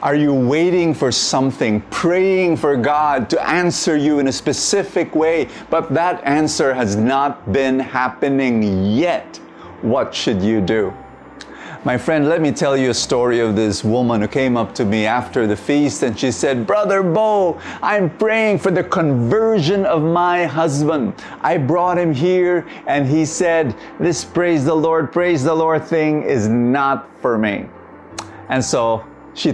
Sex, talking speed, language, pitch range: male, 165 wpm, English, 125-175 Hz